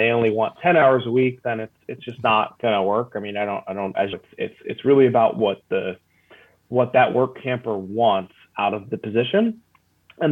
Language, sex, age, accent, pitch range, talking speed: English, male, 30-49, American, 110-155 Hz, 220 wpm